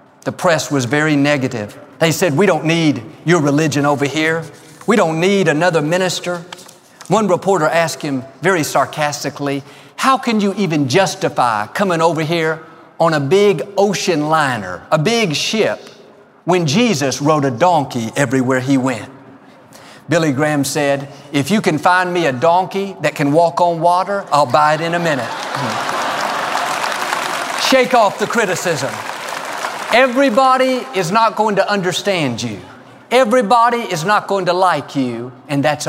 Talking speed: 155 wpm